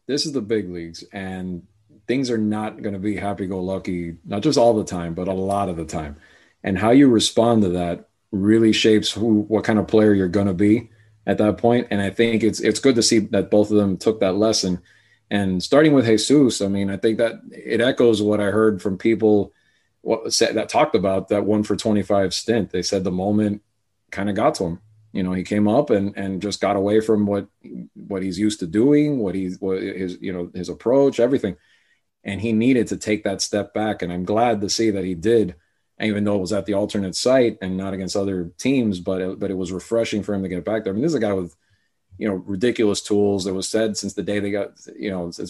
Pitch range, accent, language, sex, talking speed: 95-110 Hz, American, English, male, 240 wpm